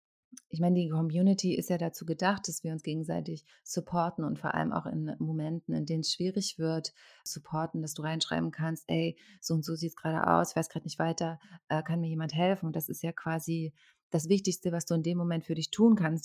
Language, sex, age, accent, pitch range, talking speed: German, female, 30-49, German, 160-180 Hz, 230 wpm